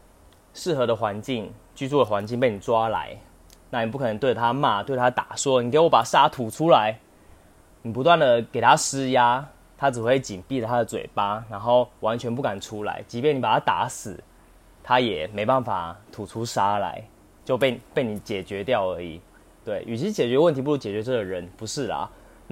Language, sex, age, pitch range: Chinese, male, 20-39, 105-140 Hz